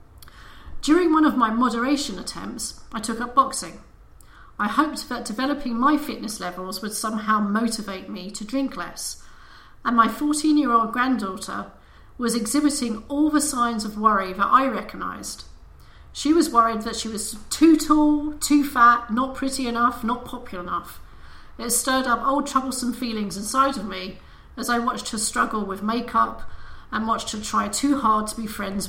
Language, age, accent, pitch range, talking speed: English, 40-59, British, 210-260 Hz, 165 wpm